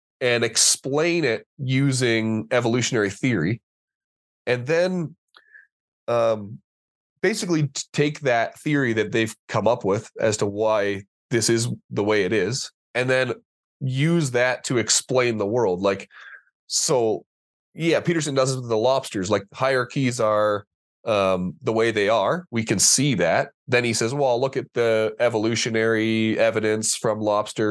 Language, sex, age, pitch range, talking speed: English, male, 20-39, 110-135 Hz, 145 wpm